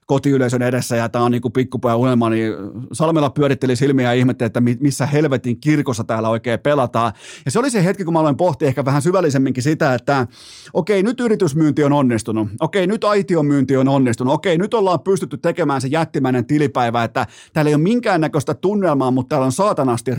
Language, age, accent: Finnish, 30-49, native